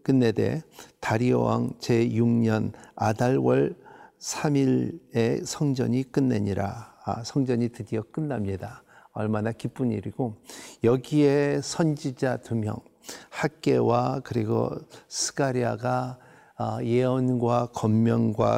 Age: 50-69